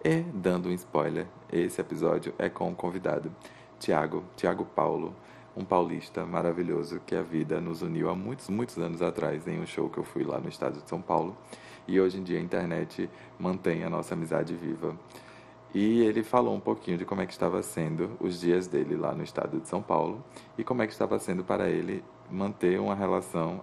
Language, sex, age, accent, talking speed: Portuguese, male, 20-39, Brazilian, 205 wpm